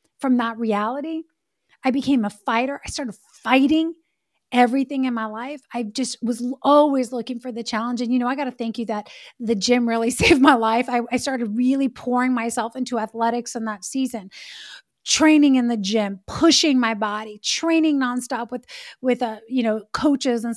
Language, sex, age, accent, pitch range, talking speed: English, female, 30-49, American, 225-270 Hz, 185 wpm